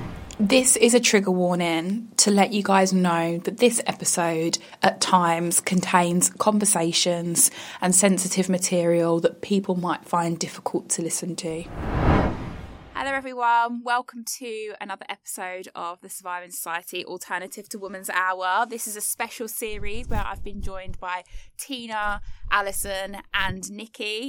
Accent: British